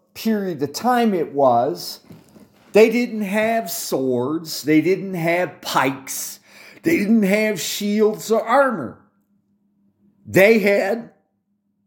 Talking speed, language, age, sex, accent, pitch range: 105 wpm, English, 40-59, male, American, 180-210 Hz